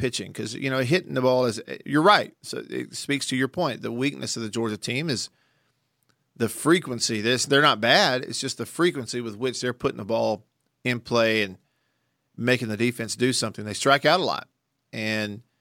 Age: 40-59